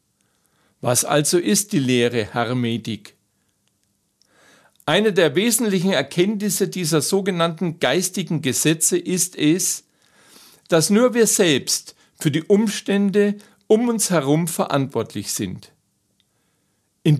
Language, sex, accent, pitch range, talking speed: German, male, German, 135-195 Hz, 100 wpm